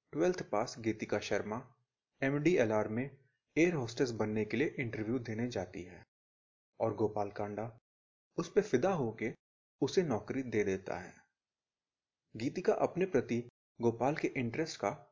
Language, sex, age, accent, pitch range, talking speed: Hindi, male, 30-49, native, 110-140 Hz, 140 wpm